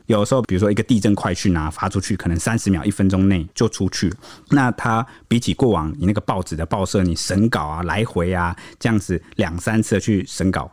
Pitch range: 90-125 Hz